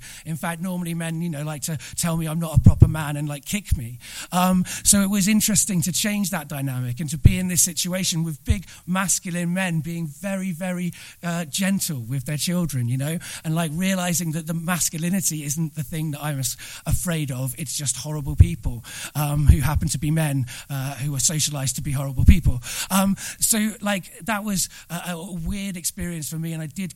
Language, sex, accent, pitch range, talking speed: English, male, British, 145-175 Hz, 210 wpm